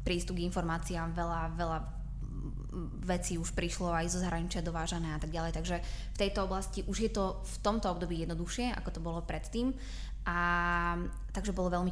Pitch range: 160-185 Hz